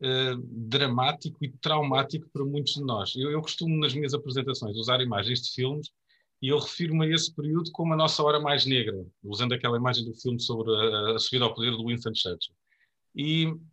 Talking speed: 195 wpm